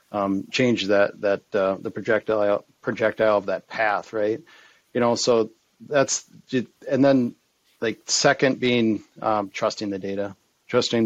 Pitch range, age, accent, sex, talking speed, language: 105-115 Hz, 40-59, American, male, 140 wpm, English